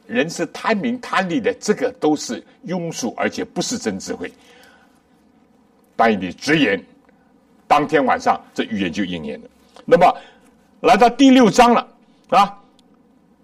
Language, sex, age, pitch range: Chinese, male, 60-79, 230-250 Hz